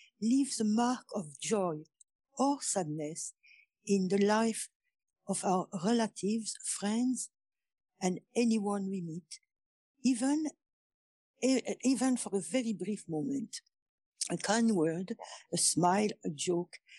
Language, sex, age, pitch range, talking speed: English, female, 60-79, 185-265 Hz, 115 wpm